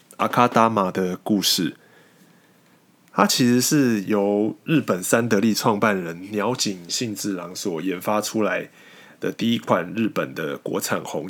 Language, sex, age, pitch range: Chinese, male, 20-39, 100-120 Hz